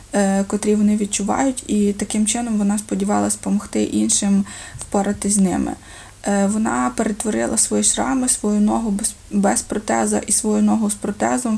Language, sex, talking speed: Ukrainian, female, 135 wpm